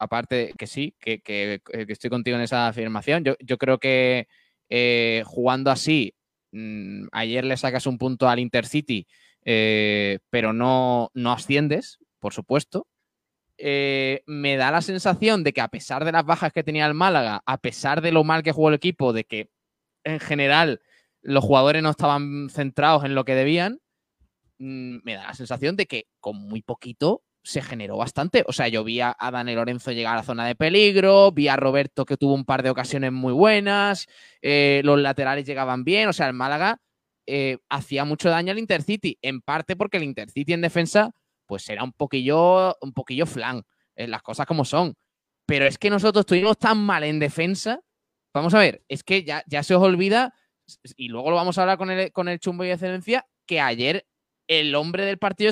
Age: 20-39